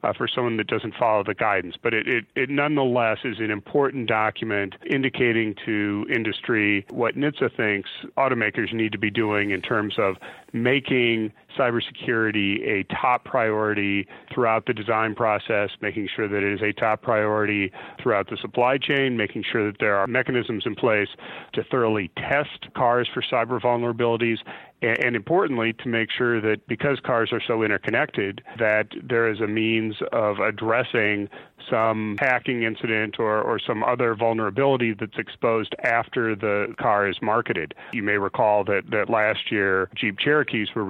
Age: 40-59